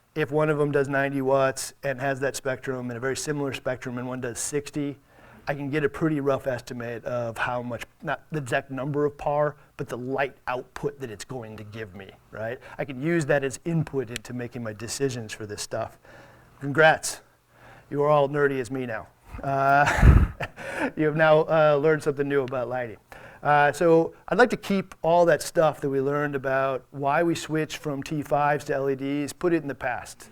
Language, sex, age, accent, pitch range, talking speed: English, male, 40-59, American, 135-155 Hz, 205 wpm